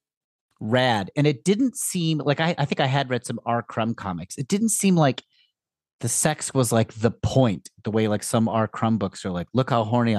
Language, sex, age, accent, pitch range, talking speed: English, male, 30-49, American, 105-145 Hz, 225 wpm